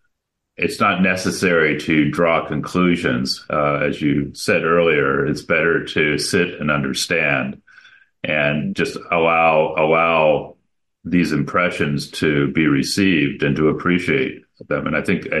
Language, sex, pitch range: English, male, 70-85 Hz